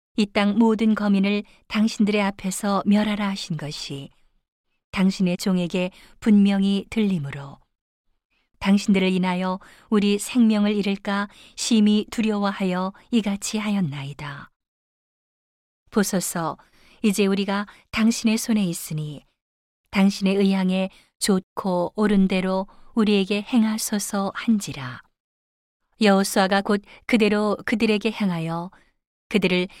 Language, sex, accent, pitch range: Korean, female, native, 185-210 Hz